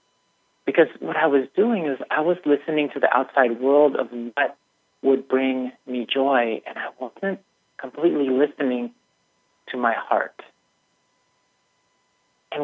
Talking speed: 135 wpm